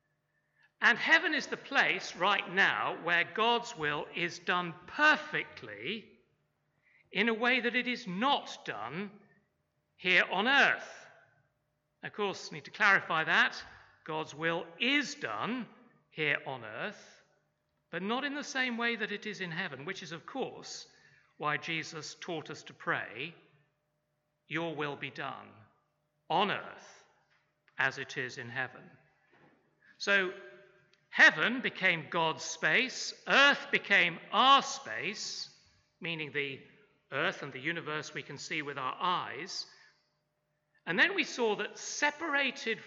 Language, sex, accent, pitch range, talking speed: English, male, British, 150-215 Hz, 135 wpm